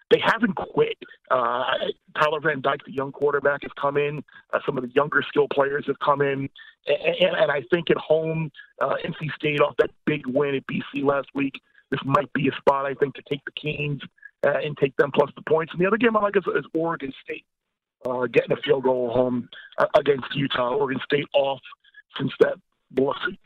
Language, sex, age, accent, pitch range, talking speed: English, male, 40-59, American, 135-195 Hz, 210 wpm